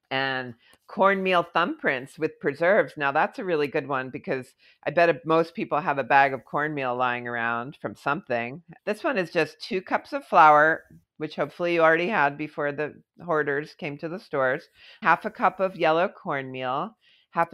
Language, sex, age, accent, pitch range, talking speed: English, female, 50-69, American, 145-180 Hz, 180 wpm